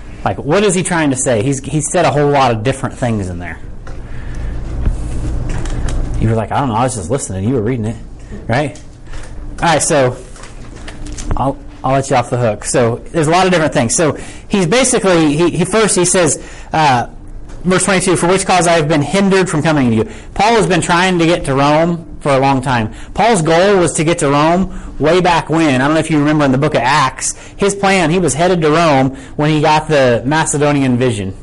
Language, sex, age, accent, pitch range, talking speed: English, male, 30-49, American, 130-170 Hz, 225 wpm